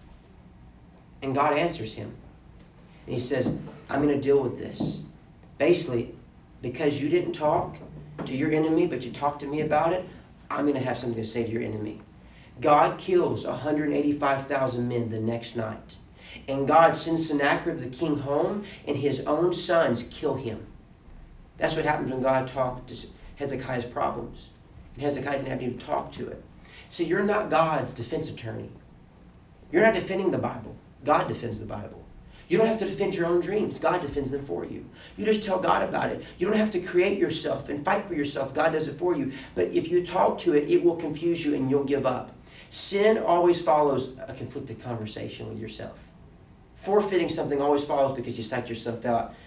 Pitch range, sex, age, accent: 120-165 Hz, male, 40-59, American